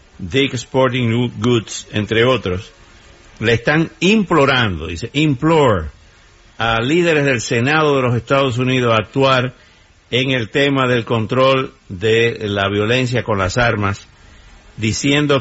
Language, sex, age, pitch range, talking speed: Spanish, male, 60-79, 110-135 Hz, 125 wpm